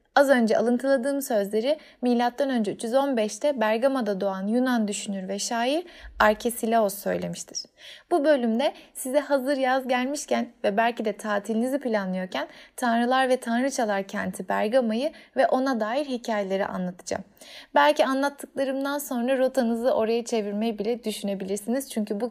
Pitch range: 215-280 Hz